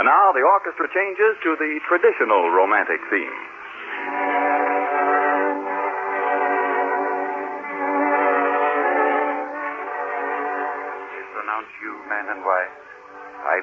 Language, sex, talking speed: English, male, 75 wpm